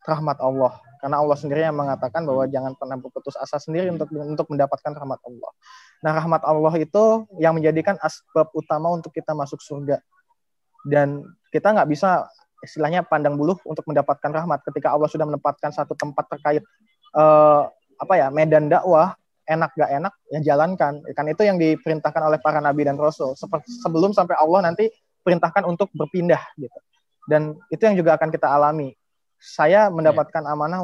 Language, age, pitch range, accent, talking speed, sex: Indonesian, 20-39, 150-175 Hz, native, 165 wpm, male